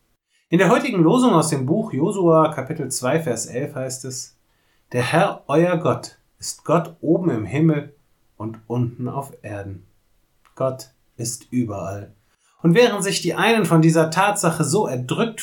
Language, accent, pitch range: German, German, 115-160 Hz